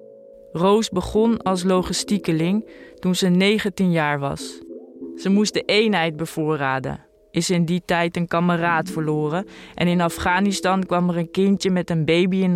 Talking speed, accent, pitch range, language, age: 155 wpm, Dutch, 160-190 Hz, Dutch, 20-39